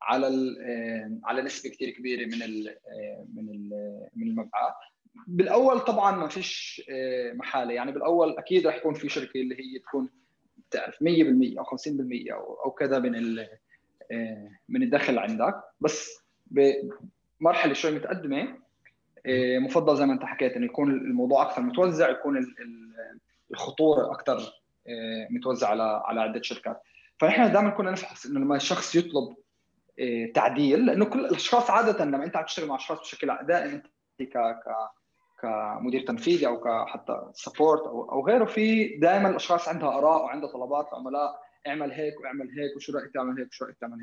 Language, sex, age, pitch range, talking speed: Arabic, male, 20-39, 130-195 Hz, 145 wpm